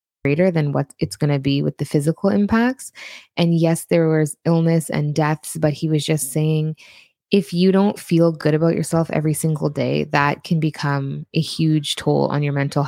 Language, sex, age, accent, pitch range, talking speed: English, female, 20-39, American, 150-180 Hz, 195 wpm